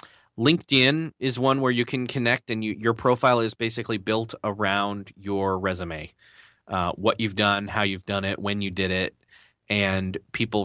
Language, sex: English, male